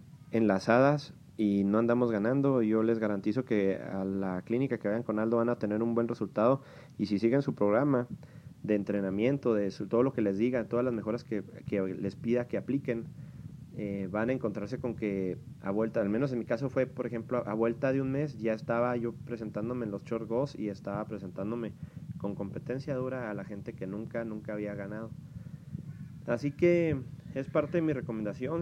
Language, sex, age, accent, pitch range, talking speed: English, male, 30-49, Mexican, 110-140 Hz, 200 wpm